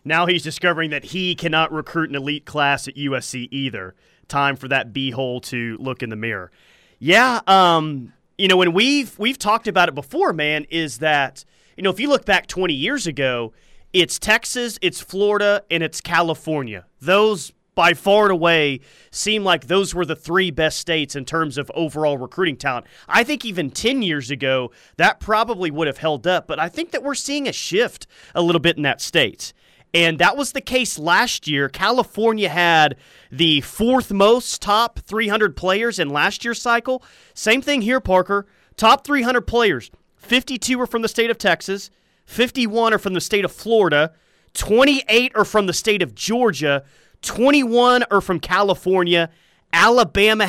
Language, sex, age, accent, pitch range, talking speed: English, male, 30-49, American, 150-215 Hz, 175 wpm